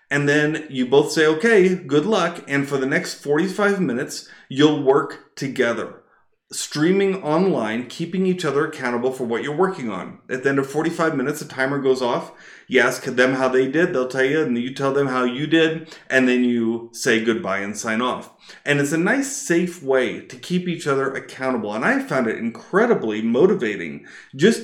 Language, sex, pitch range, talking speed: English, male, 125-160 Hz, 195 wpm